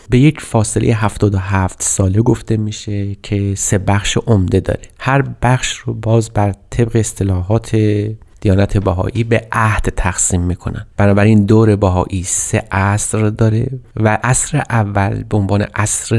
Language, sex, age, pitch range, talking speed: Persian, male, 30-49, 95-115 Hz, 130 wpm